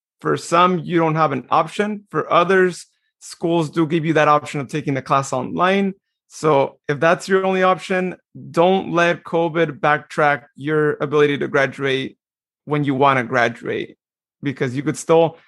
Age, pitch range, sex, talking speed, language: 30-49, 145-175 Hz, male, 165 wpm, English